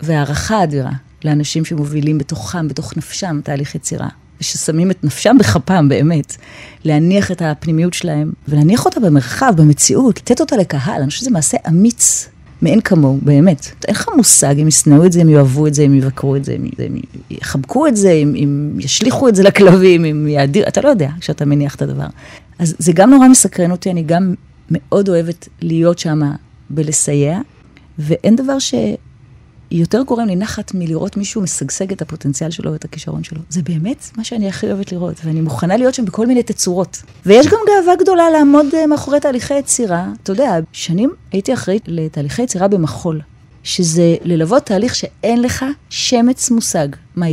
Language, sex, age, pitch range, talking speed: Hebrew, female, 30-49, 150-205 Hz, 160 wpm